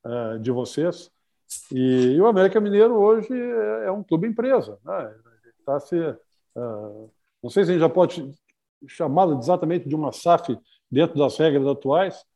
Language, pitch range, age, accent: Portuguese, 150-200 Hz, 50-69, Brazilian